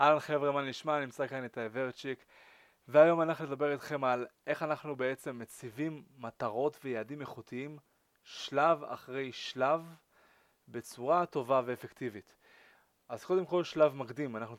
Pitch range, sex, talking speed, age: 125-150 Hz, male, 130 wpm, 20-39